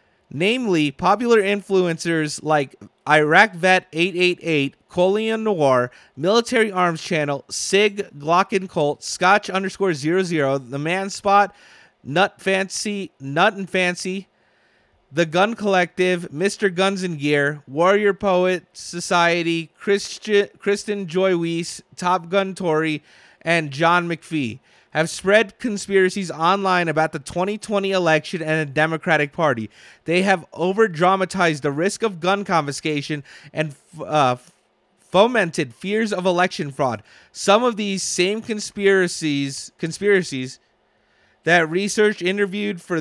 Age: 30-49